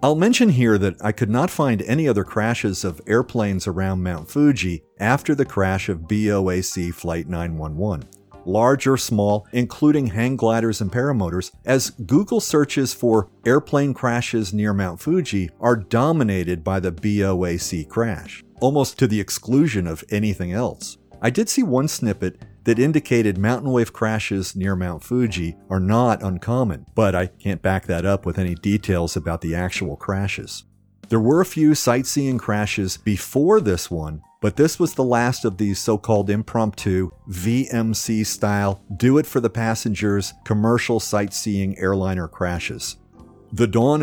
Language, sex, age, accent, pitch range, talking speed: English, male, 50-69, American, 95-125 Hz, 150 wpm